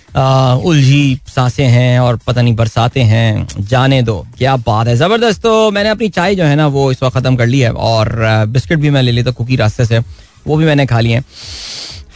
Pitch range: 115-150 Hz